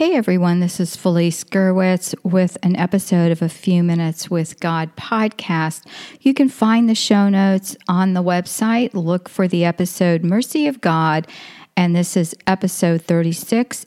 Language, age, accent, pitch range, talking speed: English, 50-69, American, 170-215 Hz, 160 wpm